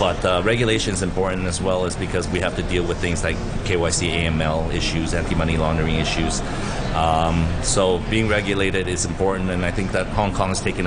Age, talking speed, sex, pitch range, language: 30-49, 200 wpm, male, 85-100 Hz, English